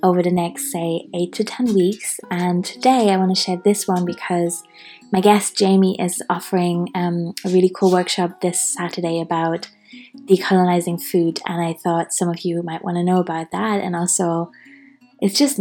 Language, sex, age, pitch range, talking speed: English, female, 20-39, 175-200 Hz, 175 wpm